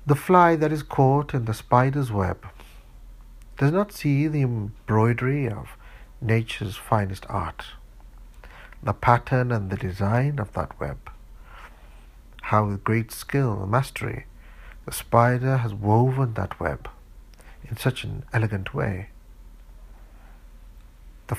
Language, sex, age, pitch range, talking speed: English, male, 60-79, 100-125 Hz, 125 wpm